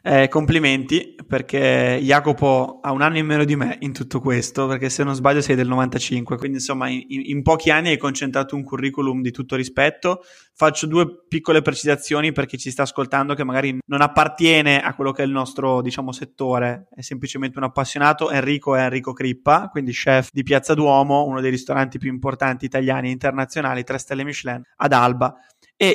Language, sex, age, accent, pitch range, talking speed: Italian, male, 20-39, native, 130-155 Hz, 190 wpm